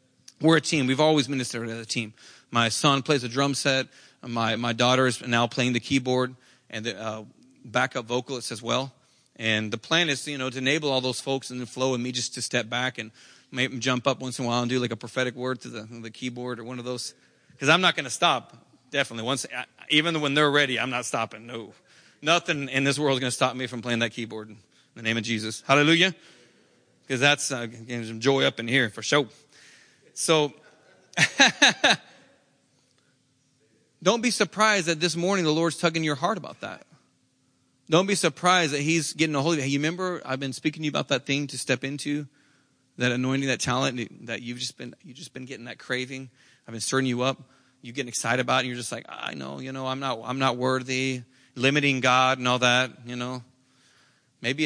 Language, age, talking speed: English, 40-59, 220 wpm